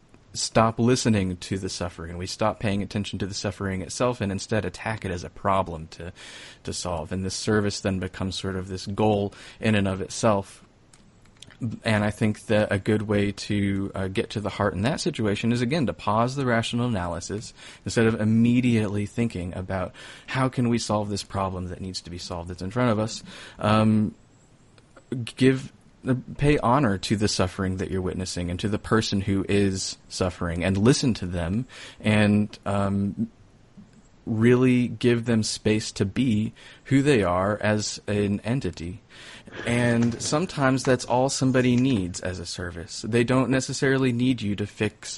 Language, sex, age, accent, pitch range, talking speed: English, male, 30-49, American, 95-115 Hz, 175 wpm